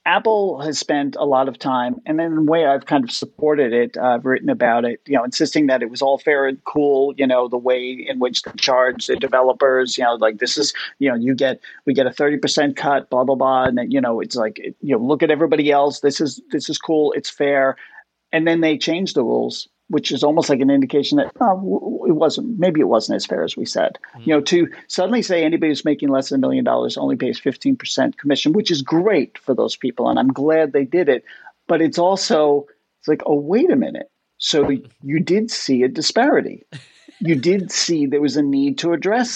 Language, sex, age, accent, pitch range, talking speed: English, male, 40-59, American, 135-170 Hz, 235 wpm